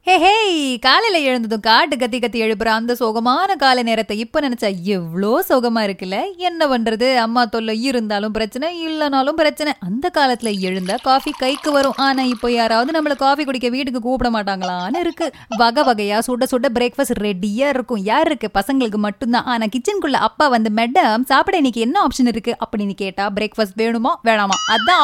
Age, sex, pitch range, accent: 30-49, female, 220-305 Hz, native